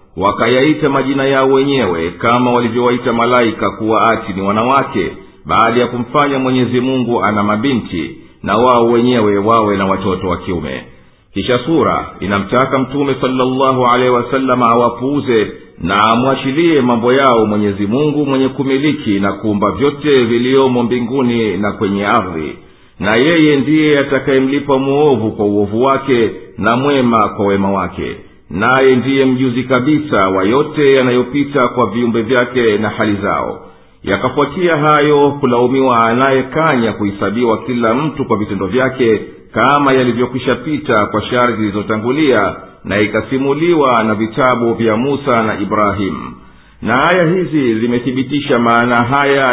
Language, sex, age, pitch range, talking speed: Swahili, male, 50-69, 105-135 Hz, 130 wpm